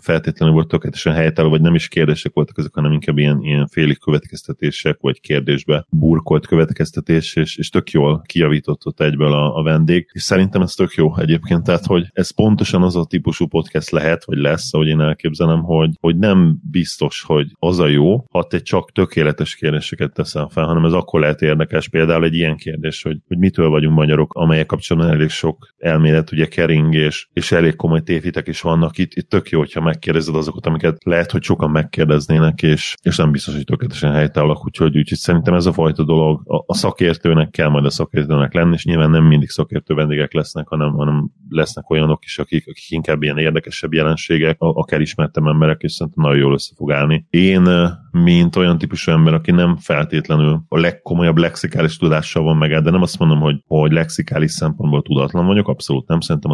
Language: Hungarian